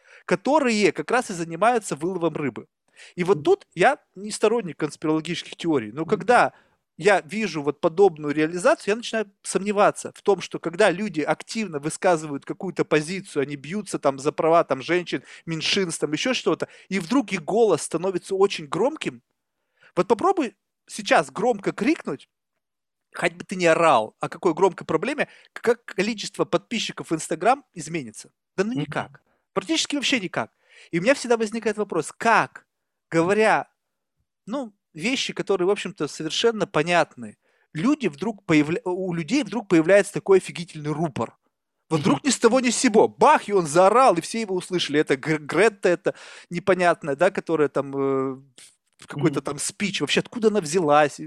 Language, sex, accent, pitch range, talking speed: Russian, male, native, 160-225 Hz, 150 wpm